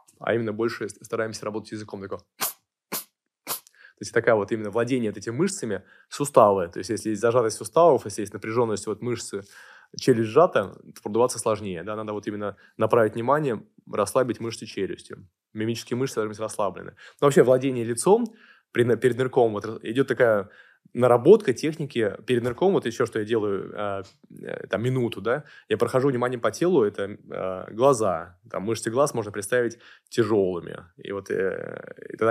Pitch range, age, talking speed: 105-130 Hz, 20-39, 160 wpm